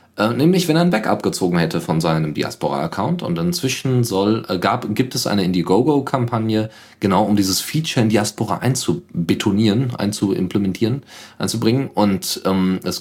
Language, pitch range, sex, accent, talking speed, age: German, 95-140 Hz, male, German, 135 wpm, 40-59